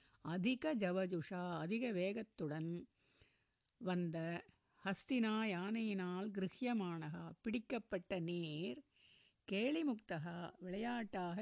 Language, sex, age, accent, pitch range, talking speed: Tamil, female, 60-79, native, 175-225 Hz, 65 wpm